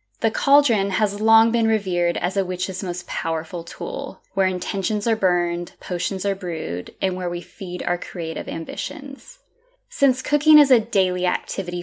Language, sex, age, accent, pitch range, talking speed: English, female, 10-29, American, 180-220 Hz, 160 wpm